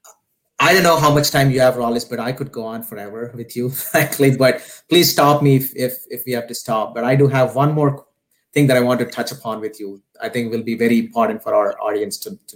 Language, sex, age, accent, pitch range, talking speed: English, male, 30-49, Indian, 120-155 Hz, 270 wpm